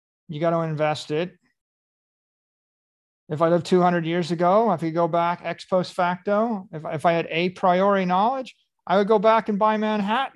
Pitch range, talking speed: 145-185 Hz, 185 wpm